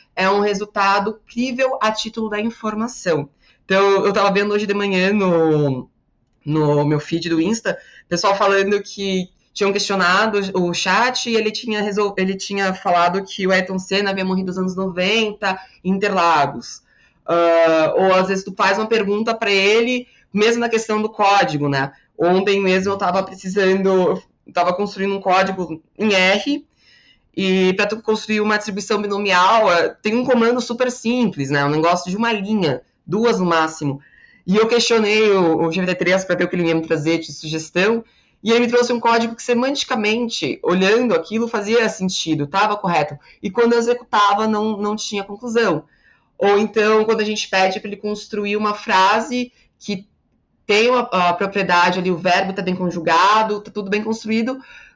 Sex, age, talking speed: female, 20-39, 170 wpm